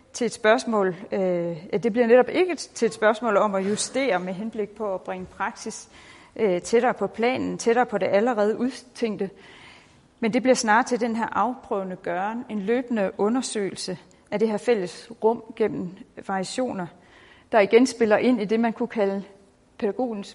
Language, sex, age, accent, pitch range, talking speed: Danish, female, 40-59, native, 195-235 Hz, 165 wpm